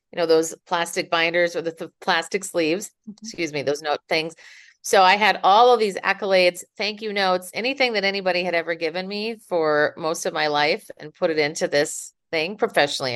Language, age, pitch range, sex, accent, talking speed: English, 40-59, 155-195 Hz, female, American, 200 wpm